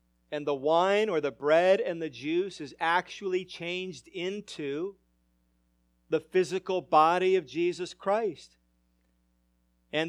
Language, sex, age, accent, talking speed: English, male, 40-59, American, 120 wpm